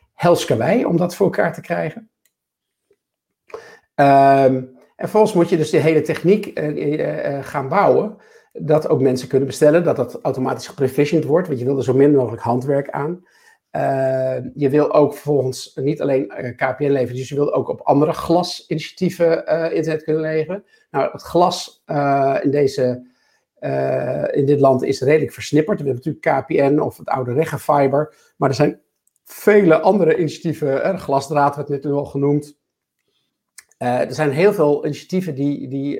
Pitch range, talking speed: 135-170 Hz, 170 wpm